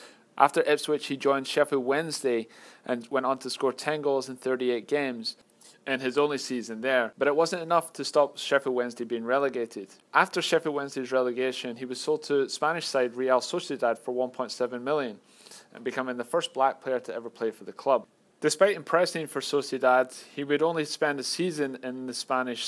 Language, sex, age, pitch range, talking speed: English, male, 30-49, 120-145 Hz, 185 wpm